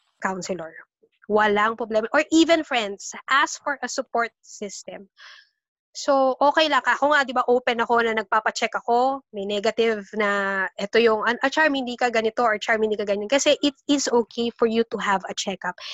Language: Filipino